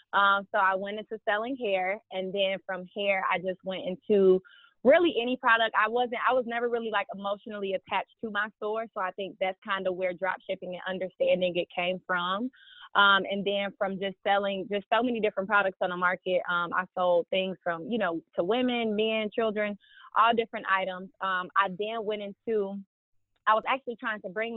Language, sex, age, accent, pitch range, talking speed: English, female, 20-39, American, 190-220 Hz, 205 wpm